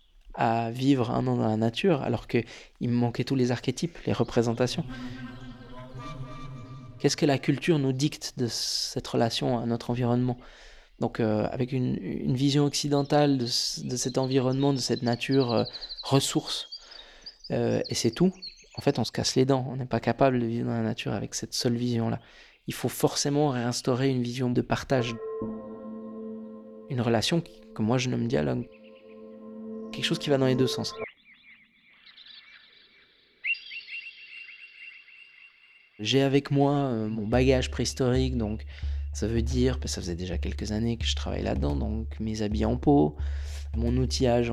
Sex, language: male, French